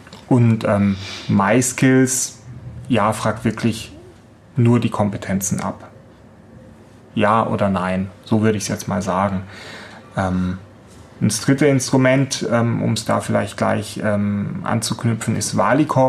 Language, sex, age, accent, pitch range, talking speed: German, male, 30-49, German, 105-120 Hz, 125 wpm